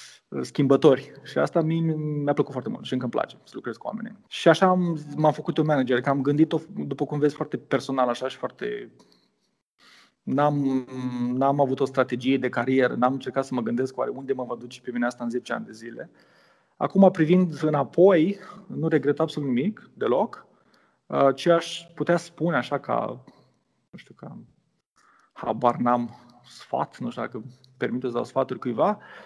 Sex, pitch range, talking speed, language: male, 130-160 Hz, 180 wpm, Romanian